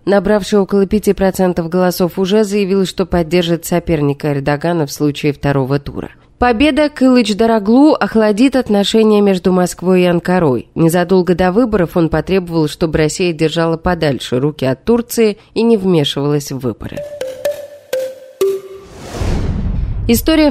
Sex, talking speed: female, 115 wpm